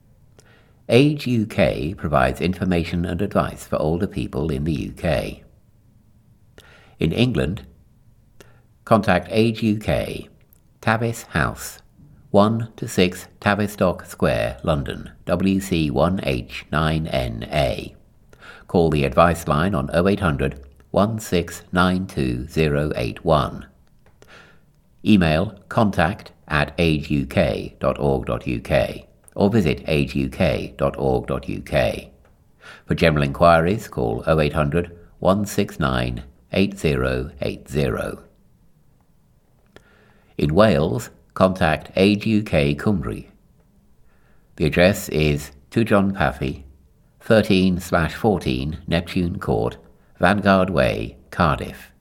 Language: English